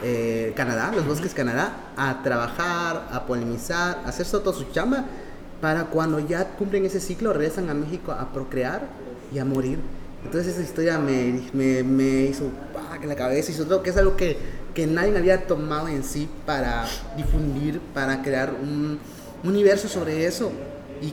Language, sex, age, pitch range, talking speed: Spanish, male, 30-49, 145-185 Hz, 175 wpm